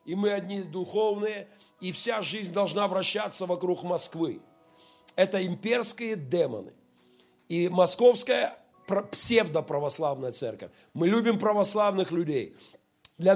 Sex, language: male, Russian